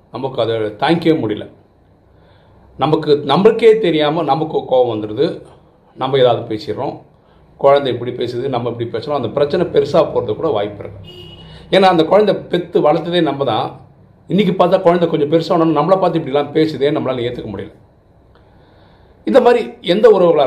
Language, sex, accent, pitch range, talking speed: Tamil, male, native, 105-170 Hz, 145 wpm